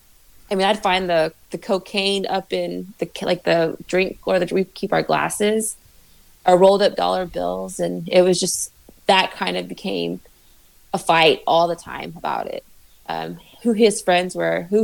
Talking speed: 180 wpm